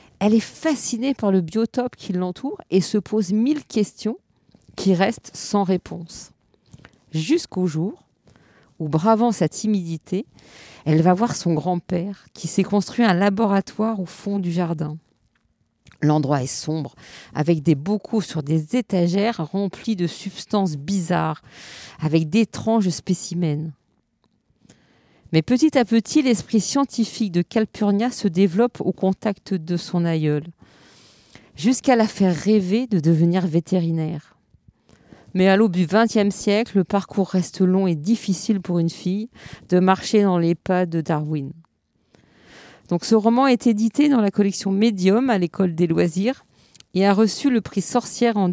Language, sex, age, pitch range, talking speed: French, female, 50-69, 170-220 Hz, 145 wpm